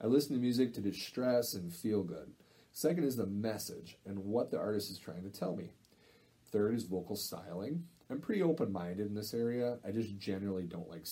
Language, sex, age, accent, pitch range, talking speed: English, male, 30-49, American, 90-120 Hz, 200 wpm